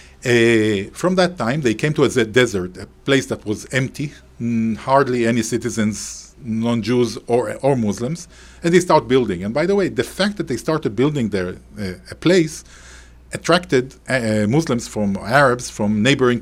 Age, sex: 40-59, male